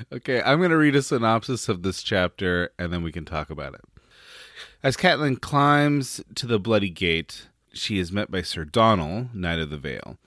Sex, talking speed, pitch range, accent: male, 200 wpm, 90-115 Hz, American